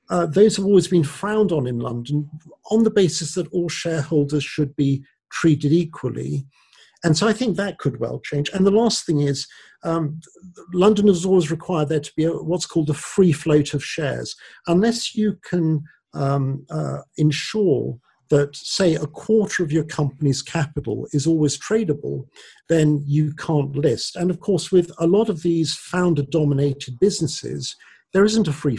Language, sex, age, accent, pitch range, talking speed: English, male, 50-69, British, 140-180 Hz, 170 wpm